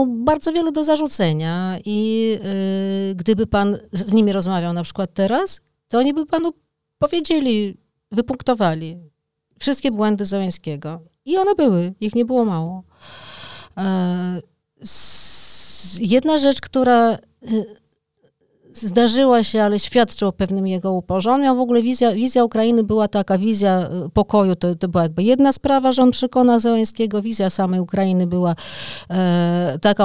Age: 50-69